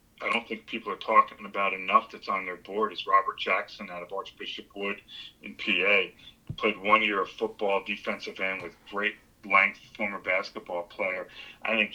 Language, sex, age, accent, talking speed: English, male, 40-59, American, 180 wpm